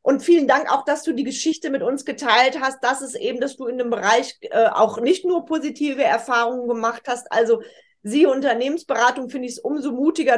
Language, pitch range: German, 235-295 Hz